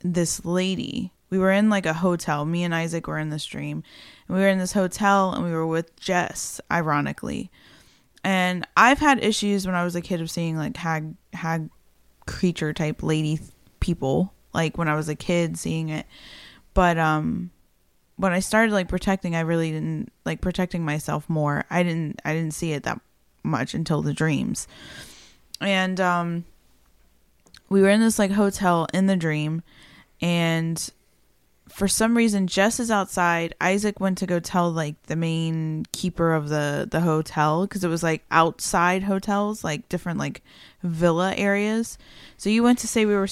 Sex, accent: female, American